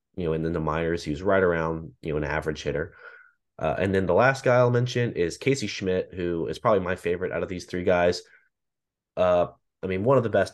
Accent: American